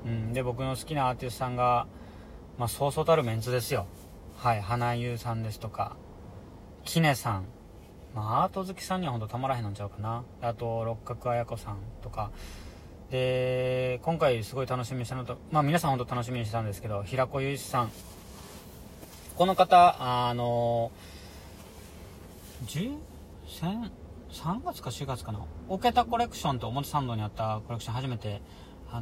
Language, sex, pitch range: Japanese, male, 100-130 Hz